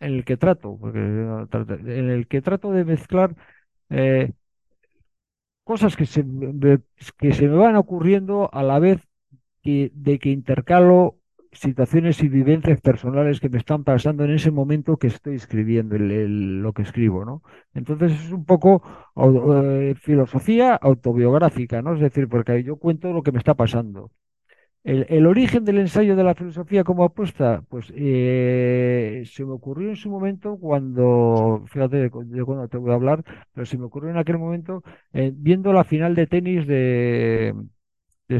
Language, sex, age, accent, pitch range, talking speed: Spanish, male, 50-69, Spanish, 120-170 Hz, 170 wpm